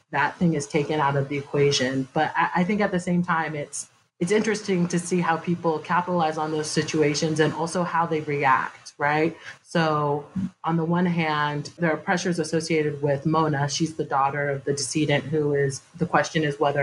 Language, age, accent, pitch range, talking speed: English, 30-49, American, 145-165 Hz, 195 wpm